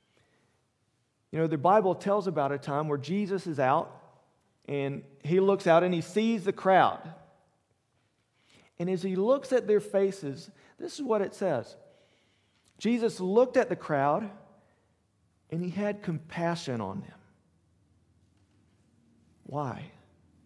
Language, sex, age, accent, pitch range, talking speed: English, male, 40-59, American, 140-210 Hz, 130 wpm